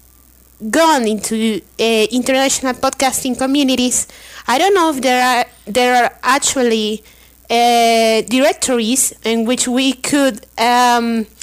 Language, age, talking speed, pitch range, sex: English, 30-49, 115 wpm, 235-285 Hz, female